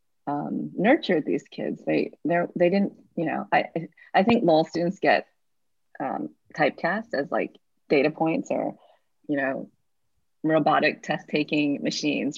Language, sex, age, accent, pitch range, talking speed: English, female, 30-49, American, 155-210 Hz, 135 wpm